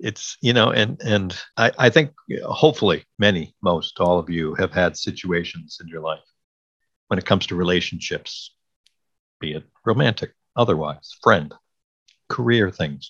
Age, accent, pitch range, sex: 50-69, American, 90-120 Hz, male